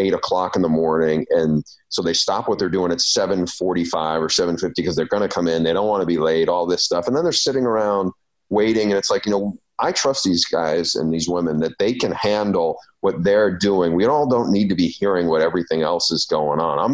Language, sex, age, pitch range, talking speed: English, male, 40-59, 85-120 Hz, 250 wpm